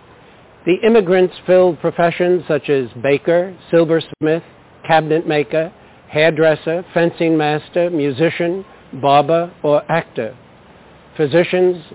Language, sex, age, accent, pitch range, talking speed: English, male, 50-69, American, 140-170 Hz, 85 wpm